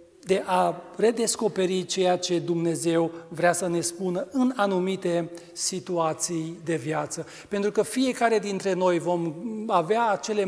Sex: male